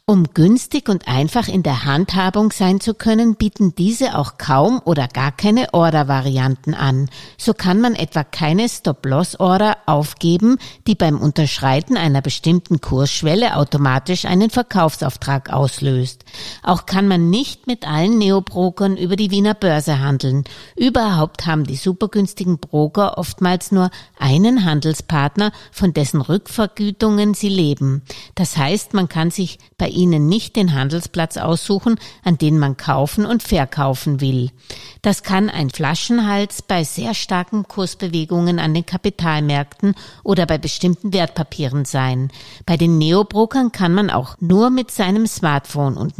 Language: German